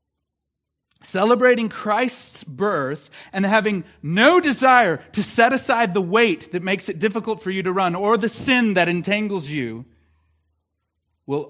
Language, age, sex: English, 40-59, male